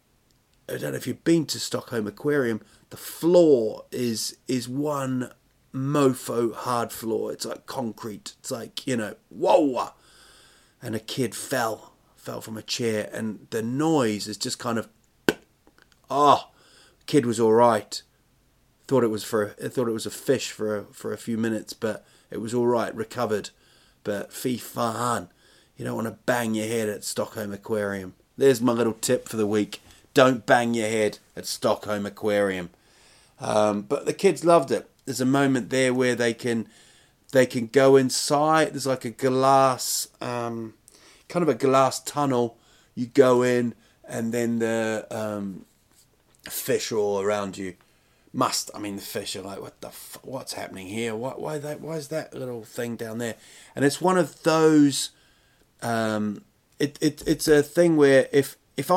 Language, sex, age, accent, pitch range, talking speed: English, male, 30-49, British, 110-135 Hz, 170 wpm